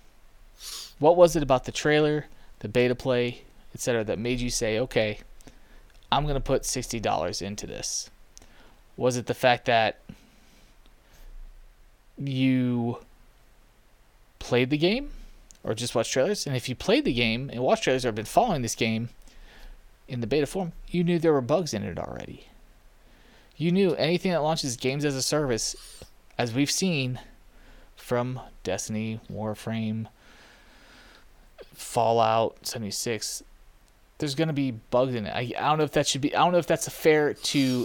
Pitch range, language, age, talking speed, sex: 115-145 Hz, English, 20-39, 160 wpm, male